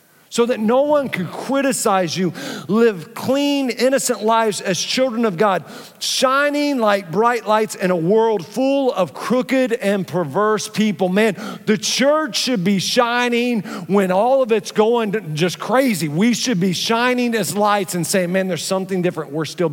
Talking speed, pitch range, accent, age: 165 wpm, 180-230 Hz, American, 40-59